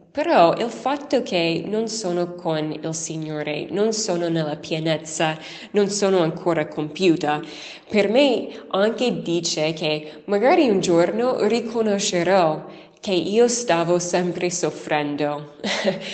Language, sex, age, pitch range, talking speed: Italian, female, 20-39, 165-215 Hz, 115 wpm